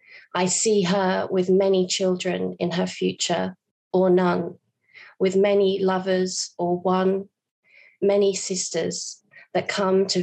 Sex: female